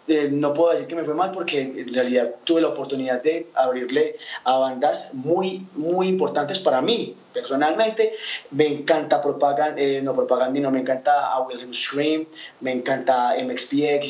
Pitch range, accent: 135-175 Hz, Colombian